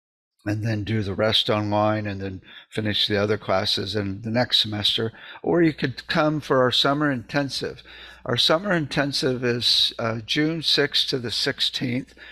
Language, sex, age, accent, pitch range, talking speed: English, male, 60-79, American, 105-125 Hz, 165 wpm